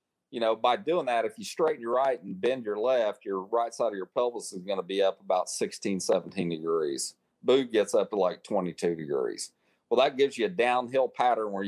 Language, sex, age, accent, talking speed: English, male, 40-59, American, 225 wpm